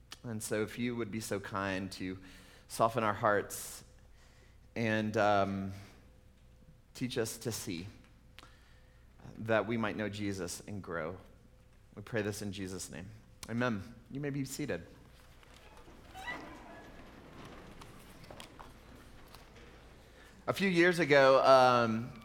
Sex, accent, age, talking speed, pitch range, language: male, American, 30-49, 110 wpm, 110-140 Hz, English